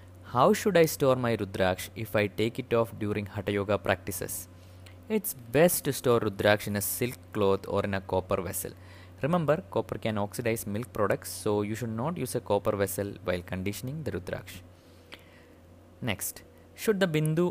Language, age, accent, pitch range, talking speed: English, 20-39, Indian, 95-120 Hz, 175 wpm